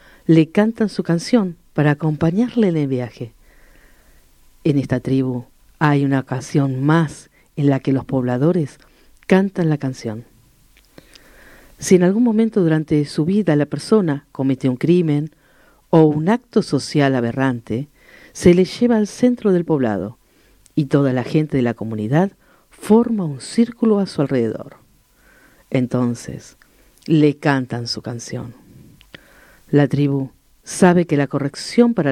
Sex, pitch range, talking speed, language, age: female, 130-175 Hz, 135 wpm, Spanish, 50-69